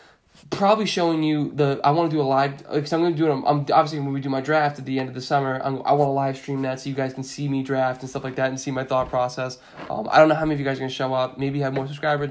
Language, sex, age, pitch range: English, male, 10-29, 135-170 Hz